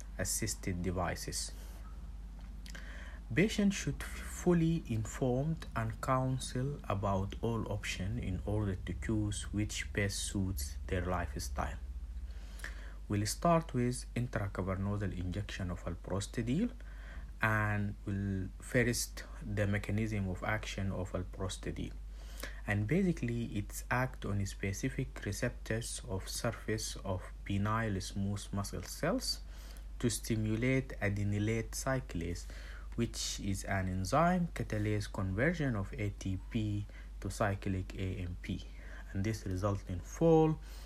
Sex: male